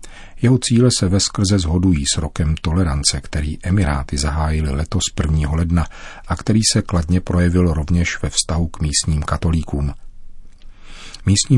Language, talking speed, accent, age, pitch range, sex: Czech, 135 wpm, native, 40-59, 80-100 Hz, male